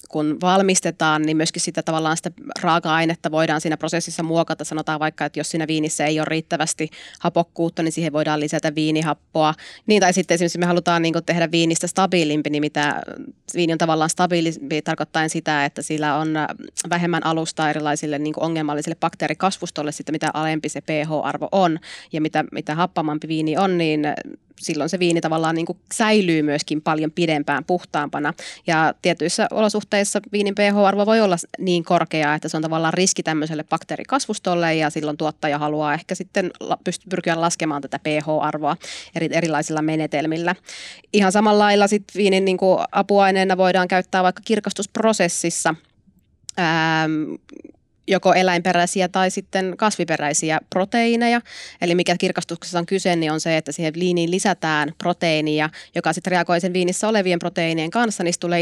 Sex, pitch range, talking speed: female, 155-180 Hz, 155 wpm